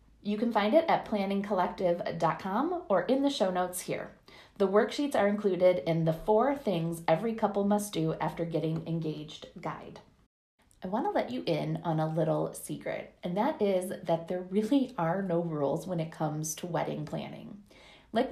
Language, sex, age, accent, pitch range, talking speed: English, female, 30-49, American, 165-225 Hz, 175 wpm